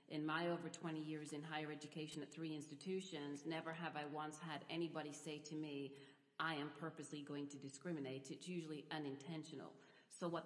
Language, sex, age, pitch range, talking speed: English, female, 40-59, 150-165 Hz, 180 wpm